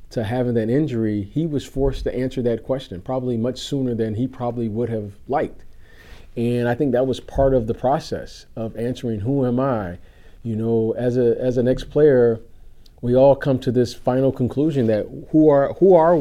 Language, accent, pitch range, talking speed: English, American, 115-135 Hz, 195 wpm